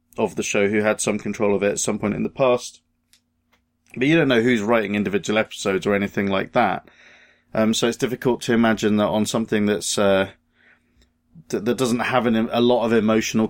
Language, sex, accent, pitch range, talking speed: English, male, British, 90-115 Hz, 210 wpm